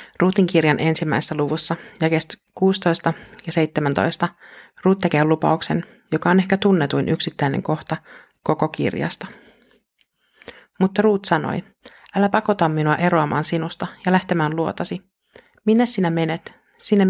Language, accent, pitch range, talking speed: Finnish, native, 155-190 Hz, 120 wpm